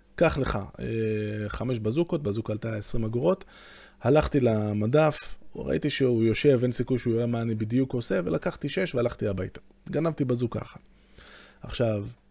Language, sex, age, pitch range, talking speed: Hebrew, male, 20-39, 105-145 Hz, 140 wpm